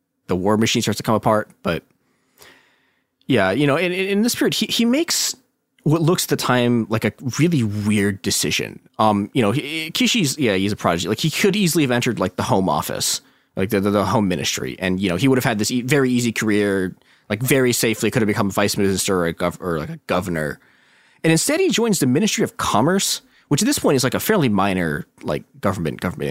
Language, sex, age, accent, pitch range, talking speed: English, male, 20-39, American, 105-155 Hz, 235 wpm